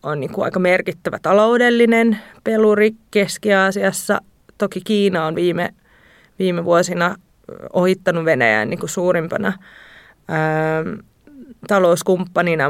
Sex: female